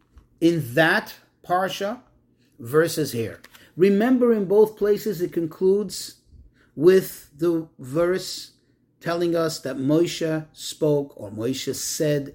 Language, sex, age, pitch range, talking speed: English, male, 40-59, 130-170 Hz, 105 wpm